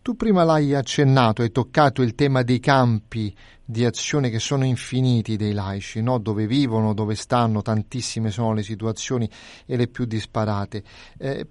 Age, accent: 30-49, native